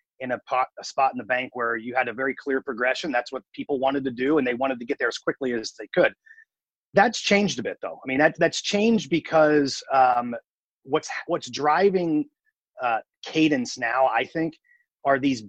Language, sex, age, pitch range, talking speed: English, male, 30-49, 130-170 Hz, 210 wpm